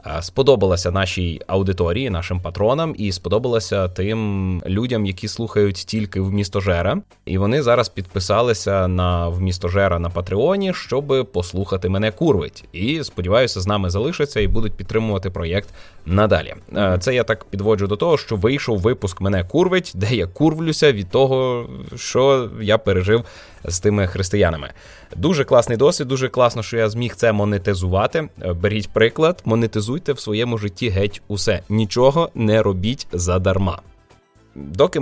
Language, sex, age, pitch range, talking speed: Ukrainian, male, 20-39, 95-115 Hz, 140 wpm